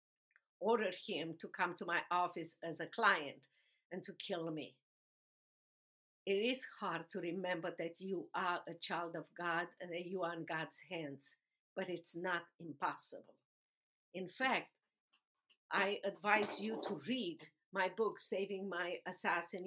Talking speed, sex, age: 150 wpm, female, 50-69